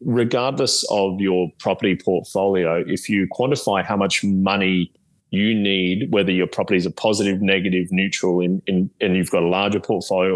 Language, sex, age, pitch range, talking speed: English, male, 20-39, 90-110 Hz, 170 wpm